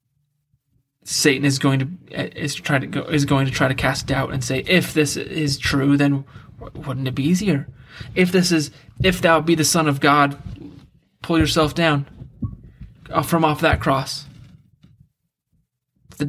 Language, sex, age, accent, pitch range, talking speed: English, male, 20-39, American, 135-150 Hz, 160 wpm